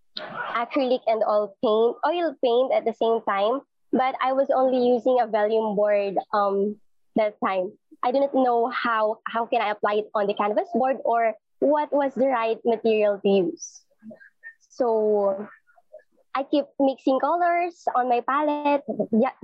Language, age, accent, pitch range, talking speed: English, 20-39, Filipino, 225-285 Hz, 155 wpm